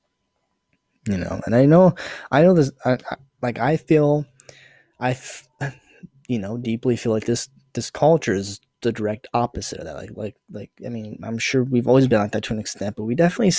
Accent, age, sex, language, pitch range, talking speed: American, 20-39, male, English, 105-135 Hz, 210 wpm